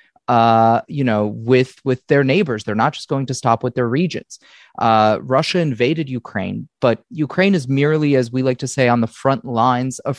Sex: male